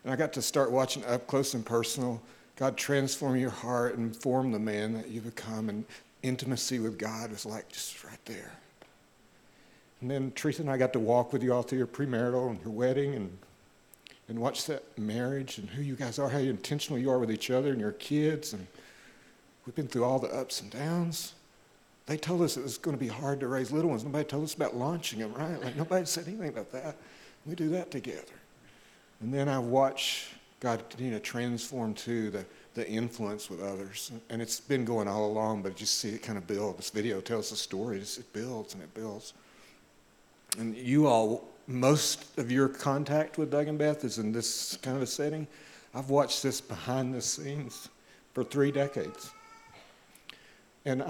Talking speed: 200 wpm